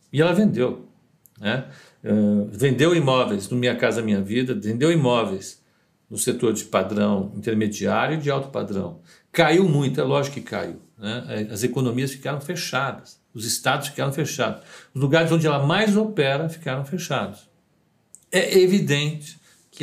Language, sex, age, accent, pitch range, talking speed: Portuguese, male, 60-79, Brazilian, 125-170 Hz, 145 wpm